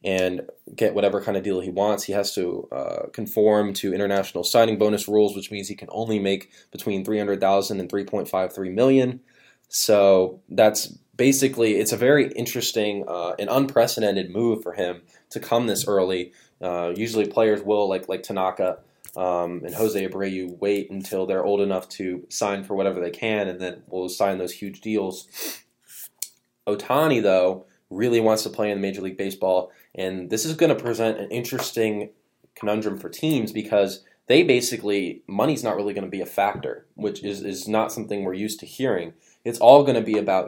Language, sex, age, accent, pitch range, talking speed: English, male, 20-39, American, 95-110 Hz, 180 wpm